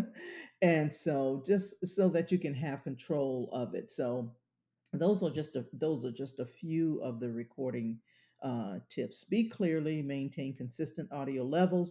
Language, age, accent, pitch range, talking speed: English, 50-69, American, 125-165 Hz, 145 wpm